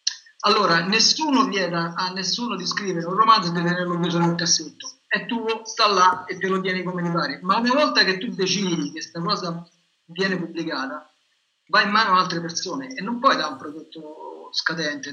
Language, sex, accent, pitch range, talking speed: Italian, male, native, 170-220 Hz, 195 wpm